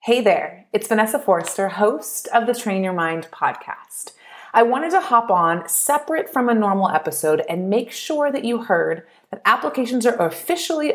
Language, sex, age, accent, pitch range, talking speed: English, female, 30-49, American, 170-240 Hz, 175 wpm